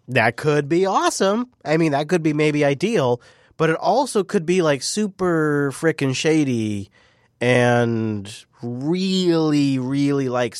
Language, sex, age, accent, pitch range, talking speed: English, male, 30-49, American, 115-160 Hz, 135 wpm